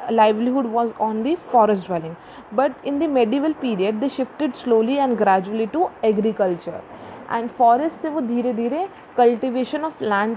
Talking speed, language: 155 wpm, English